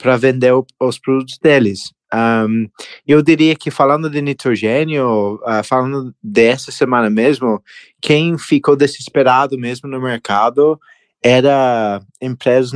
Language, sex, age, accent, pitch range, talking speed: Portuguese, male, 20-39, Brazilian, 120-140 Hz, 120 wpm